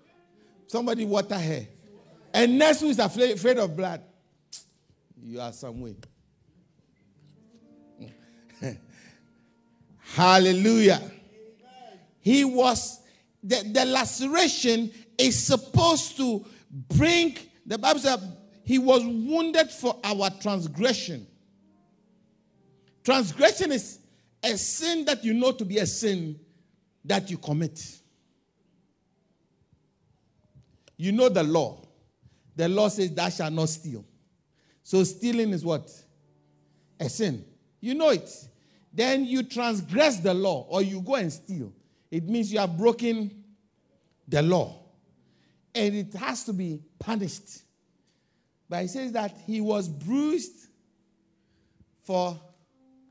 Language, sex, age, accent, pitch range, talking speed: English, male, 50-69, Nigerian, 165-240 Hz, 110 wpm